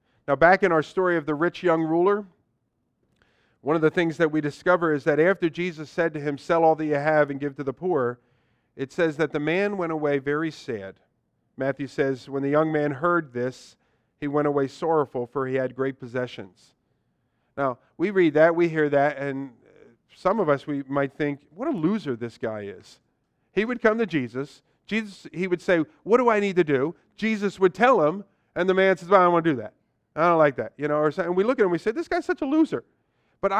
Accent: American